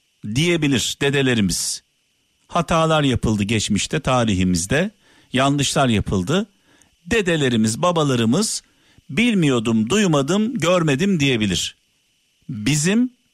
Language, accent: Turkish, native